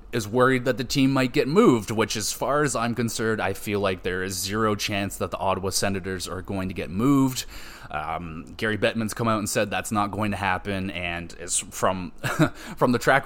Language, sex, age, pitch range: English, male, 20-39, 95-115 Hz